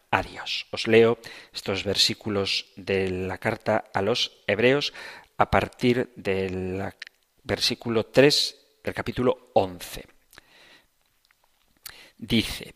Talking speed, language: 95 wpm, Spanish